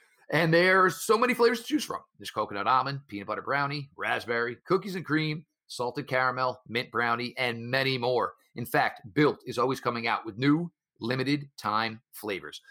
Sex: male